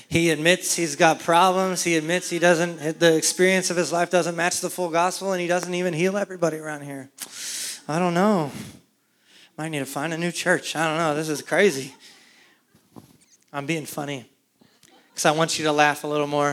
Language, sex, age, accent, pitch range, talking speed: English, male, 20-39, American, 155-185 Hz, 200 wpm